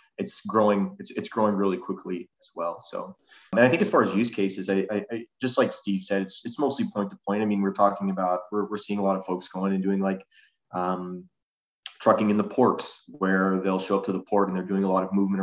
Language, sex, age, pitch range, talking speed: English, male, 20-39, 90-100 Hz, 255 wpm